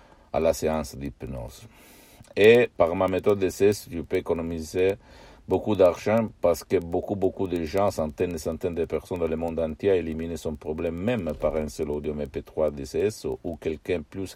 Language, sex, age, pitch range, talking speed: Italian, male, 60-79, 75-90 Hz, 185 wpm